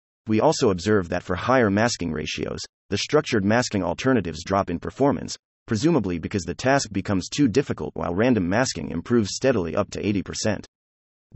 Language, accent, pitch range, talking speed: English, American, 90-120 Hz, 160 wpm